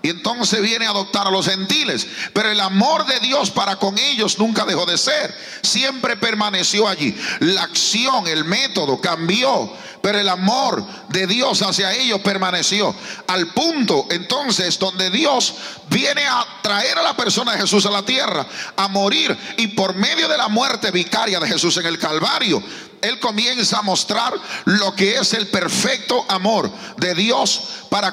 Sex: male